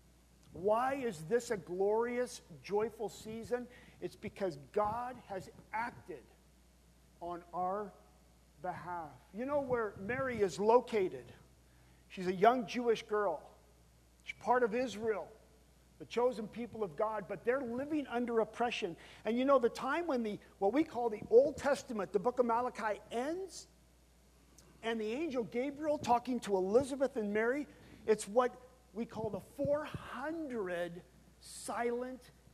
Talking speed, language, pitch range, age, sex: 135 wpm, English, 180-245 Hz, 50-69, male